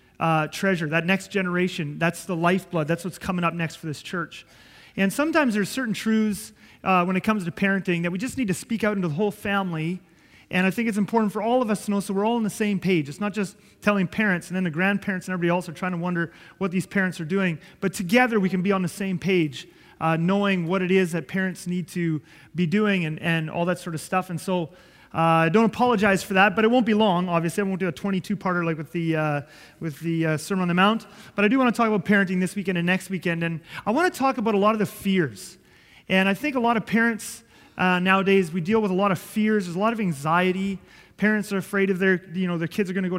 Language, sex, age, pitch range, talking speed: English, male, 30-49, 175-205 Hz, 265 wpm